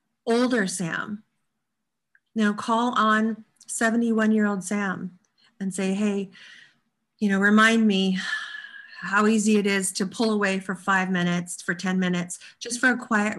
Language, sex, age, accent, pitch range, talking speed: English, female, 40-59, American, 185-230 Hz, 150 wpm